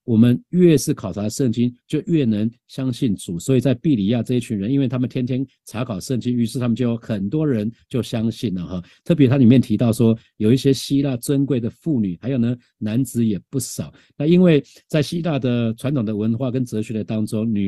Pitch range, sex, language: 110-135 Hz, male, Chinese